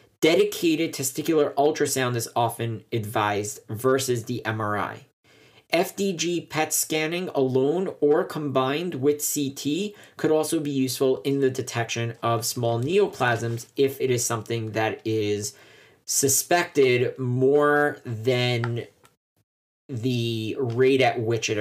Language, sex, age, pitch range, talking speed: English, male, 40-59, 120-150 Hz, 115 wpm